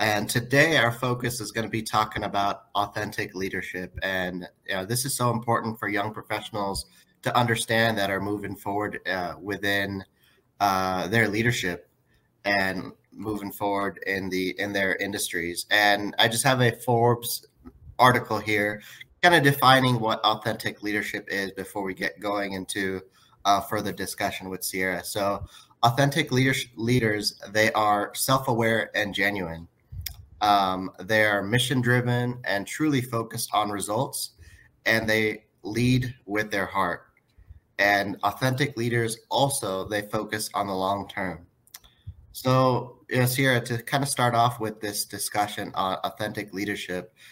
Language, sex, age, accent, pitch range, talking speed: English, male, 30-49, American, 100-120 Hz, 140 wpm